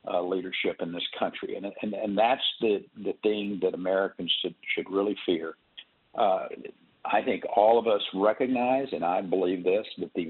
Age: 50-69